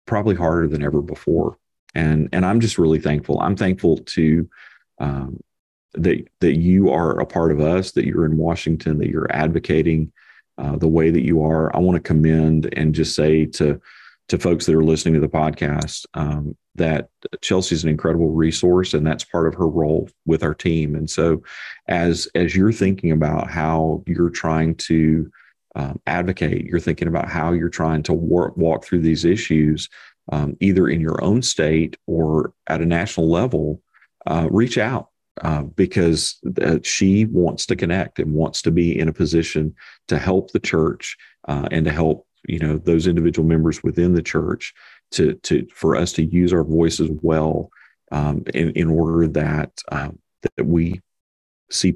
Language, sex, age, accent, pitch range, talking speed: English, male, 40-59, American, 75-85 Hz, 180 wpm